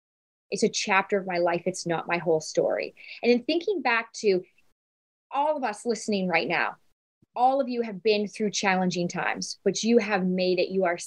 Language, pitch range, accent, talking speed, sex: English, 190-235 Hz, American, 200 wpm, female